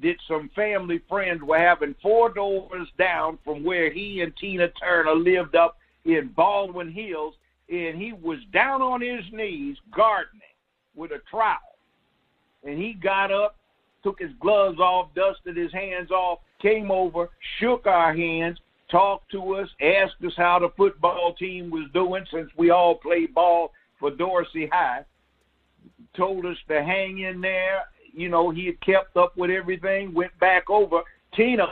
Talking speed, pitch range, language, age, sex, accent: 160 wpm, 170-200 Hz, English, 60-79, male, American